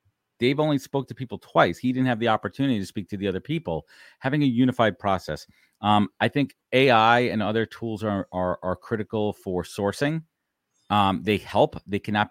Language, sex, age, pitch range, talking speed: English, male, 40-59, 95-135 Hz, 185 wpm